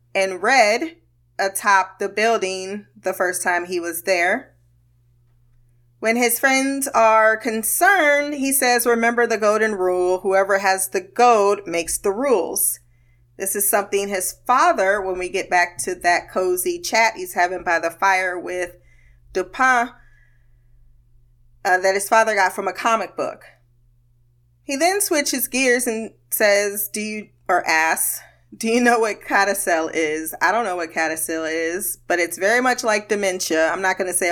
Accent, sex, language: American, female, English